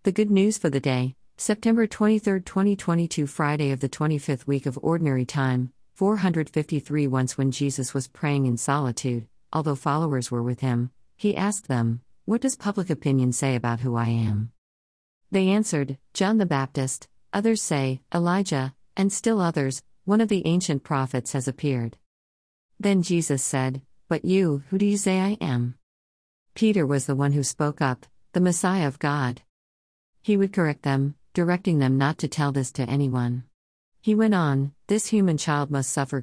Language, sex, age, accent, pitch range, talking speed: English, female, 50-69, American, 125-185 Hz, 170 wpm